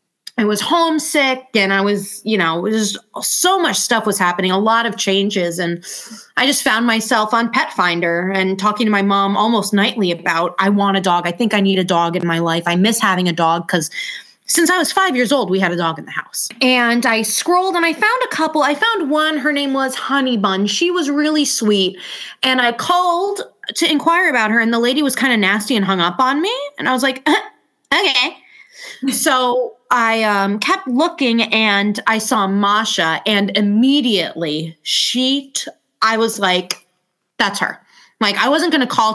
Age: 20-39